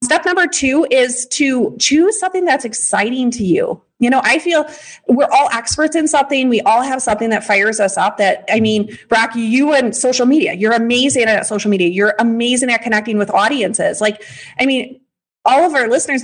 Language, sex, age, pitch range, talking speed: English, female, 30-49, 215-280 Hz, 200 wpm